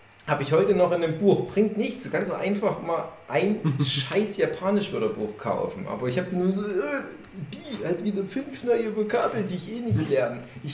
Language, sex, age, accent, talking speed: German, male, 30-49, German, 200 wpm